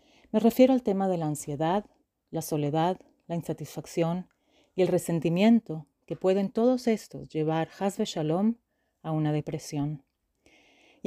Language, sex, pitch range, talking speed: English, female, 160-215 Hz, 135 wpm